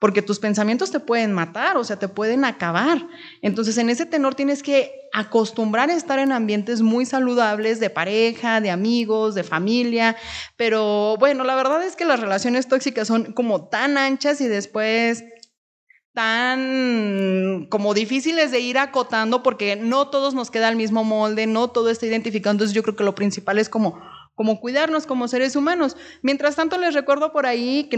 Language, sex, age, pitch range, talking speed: Spanish, female, 30-49, 210-260 Hz, 180 wpm